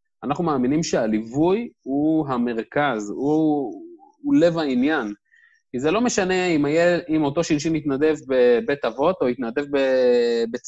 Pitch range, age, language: 140-200 Hz, 30-49, Hebrew